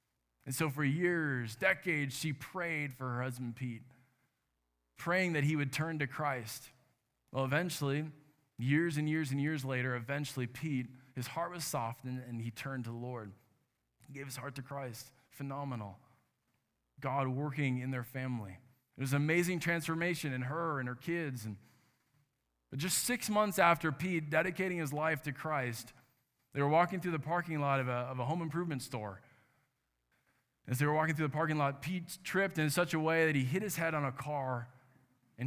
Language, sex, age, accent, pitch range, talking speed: English, male, 20-39, American, 125-160 Hz, 180 wpm